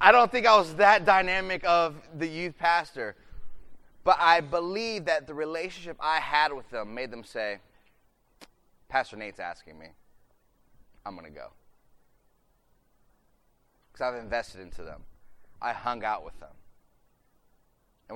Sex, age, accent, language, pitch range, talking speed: male, 30-49, American, English, 115-165 Hz, 140 wpm